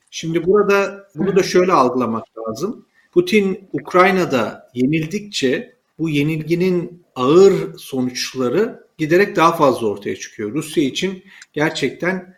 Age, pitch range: 40-59, 140-180 Hz